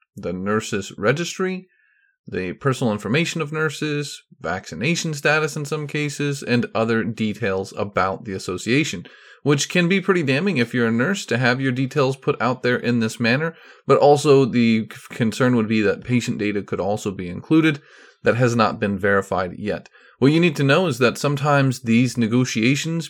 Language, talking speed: English, 175 wpm